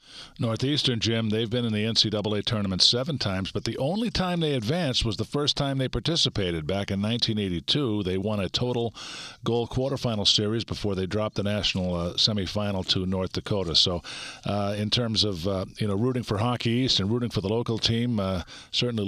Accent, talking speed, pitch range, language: American, 195 wpm, 100-130 Hz, English